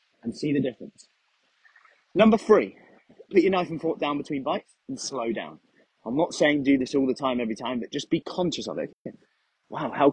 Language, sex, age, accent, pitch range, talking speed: English, male, 30-49, British, 115-165 Hz, 205 wpm